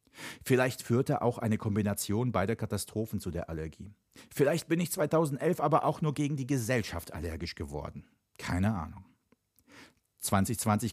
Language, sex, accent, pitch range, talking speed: German, male, German, 95-135 Hz, 135 wpm